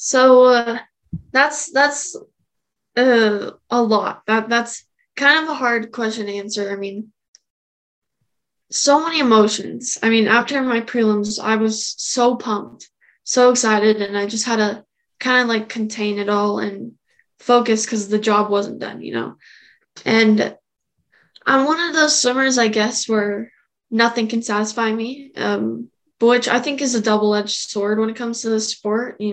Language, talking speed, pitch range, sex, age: English, 165 wpm, 215-245 Hz, female, 10-29